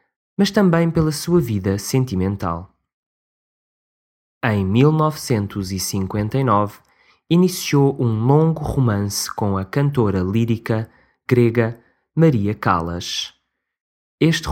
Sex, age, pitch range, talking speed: male, 20-39, 95-130 Hz, 85 wpm